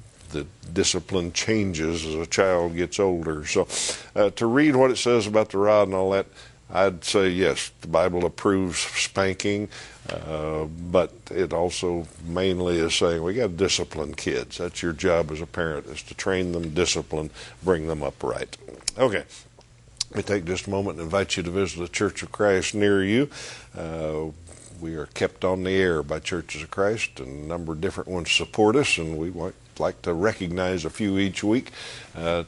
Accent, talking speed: American, 190 wpm